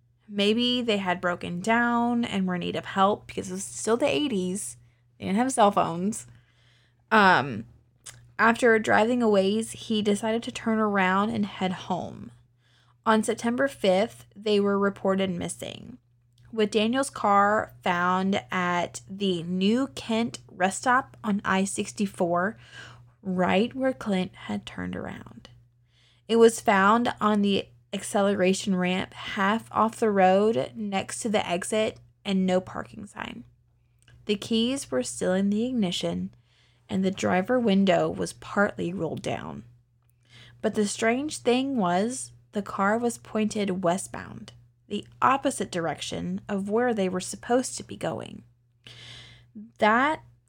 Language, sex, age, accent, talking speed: English, female, 20-39, American, 135 wpm